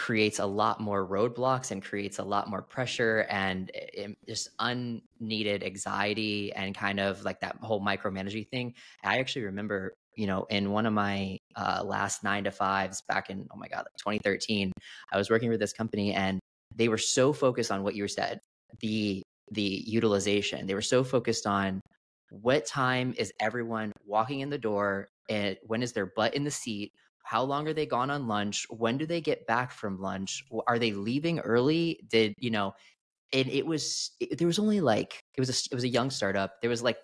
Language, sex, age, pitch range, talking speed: English, male, 20-39, 100-125 Hz, 200 wpm